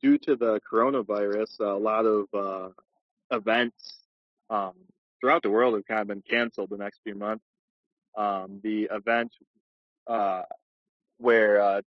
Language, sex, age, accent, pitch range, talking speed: English, male, 20-39, American, 100-120 Hz, 140 wpm